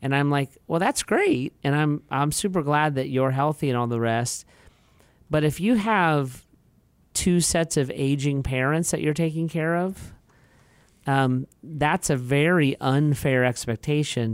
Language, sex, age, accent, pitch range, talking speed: English, male, 40-59, American, 120-155 Hz, 160 wpm